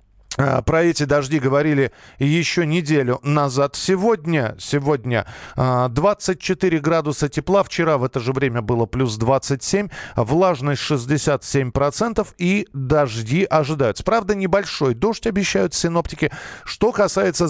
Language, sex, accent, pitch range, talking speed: Russian, male, native, 130-175 Hz, 110 wpm